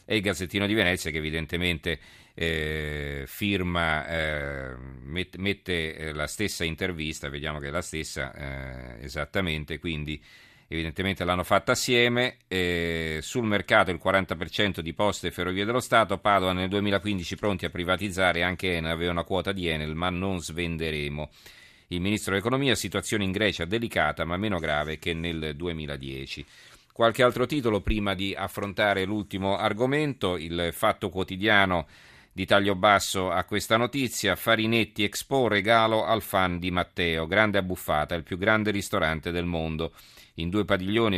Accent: native